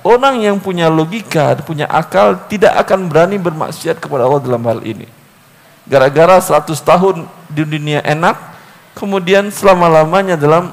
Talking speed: 135 wpm